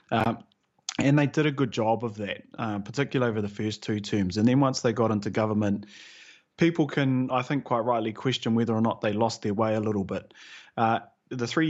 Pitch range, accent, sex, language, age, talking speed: 105-130 Hz, Australian, male, English, 30-49, 220 wpm